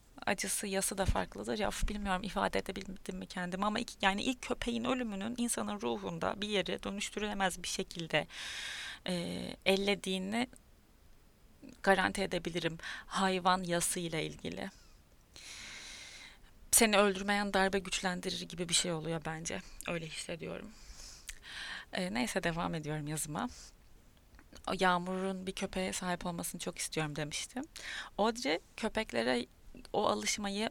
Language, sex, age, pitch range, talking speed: Turkish, female, 30-49, 175-210 Hz, 115 wpm